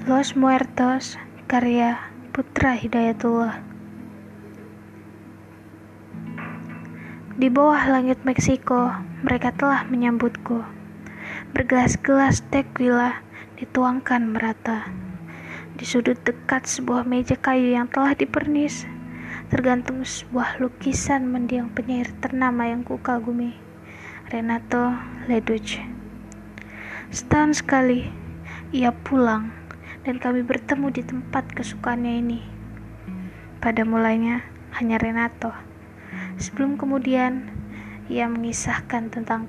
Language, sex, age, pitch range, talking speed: Indonesian, female, 20-39, 205-255 Hz, 85 wpm